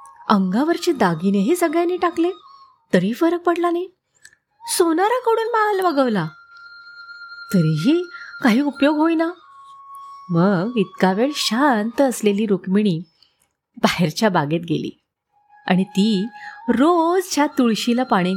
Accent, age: native, 30-49